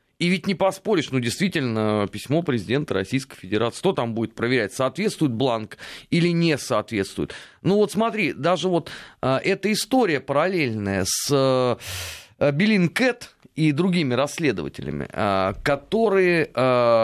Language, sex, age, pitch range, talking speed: Russian, male, 30-49, 115-180 Hz, 120 wpm